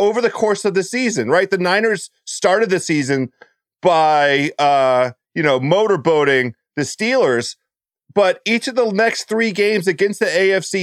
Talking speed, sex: 160 wpm, male